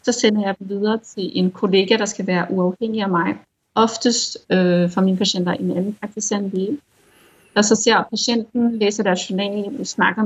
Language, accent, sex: Danish, native, female